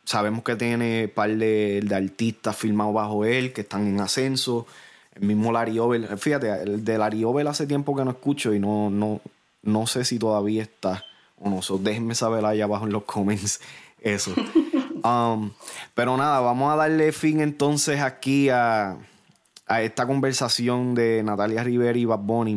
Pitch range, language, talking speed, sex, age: 105-130 Hz, Spanish, 180 wpm, male, 20-39